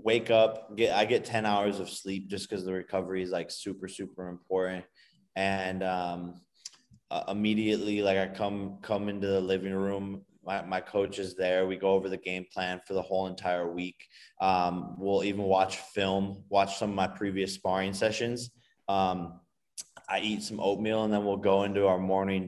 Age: 20-39